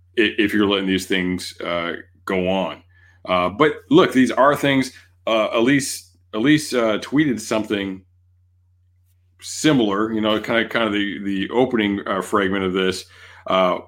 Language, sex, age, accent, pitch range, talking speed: English, male, 40-59, American, 90-110 Hz, 150 wpm